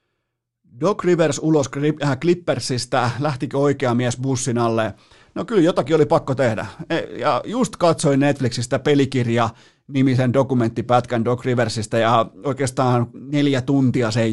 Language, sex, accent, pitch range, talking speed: Finnish, male, native, 120-145 Hz, 115 wpm